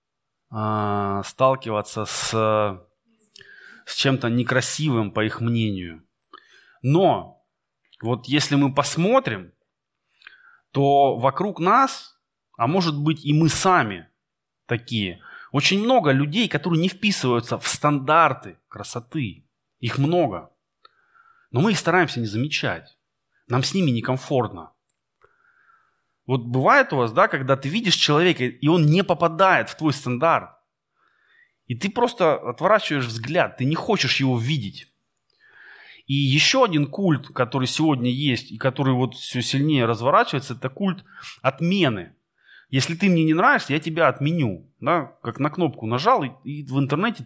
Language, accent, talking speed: Russian, native, 130 wpm